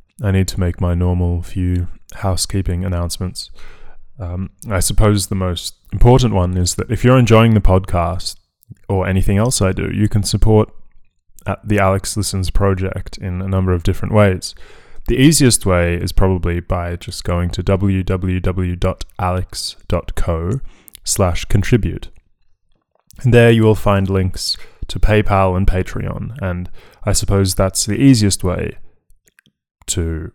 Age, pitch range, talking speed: 20-39, 90-105 Hz, 140 wpm